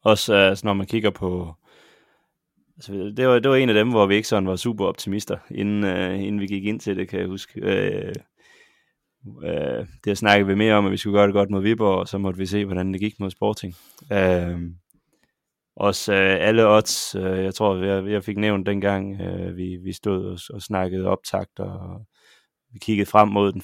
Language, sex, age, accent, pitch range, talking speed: Danish, male, 20-39, native, 95-105 Hz, 215 wpm